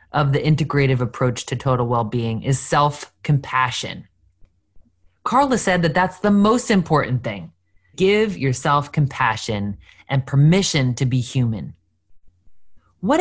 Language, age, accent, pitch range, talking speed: English, 20-39, American, 100-170 Hz, 120 wpm